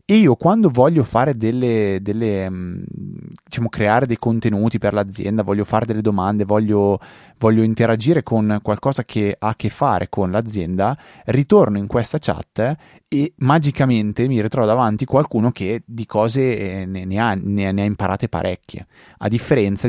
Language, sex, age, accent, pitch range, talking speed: Italian, male, 30-49, native, 100-130 Hz, 160 wpm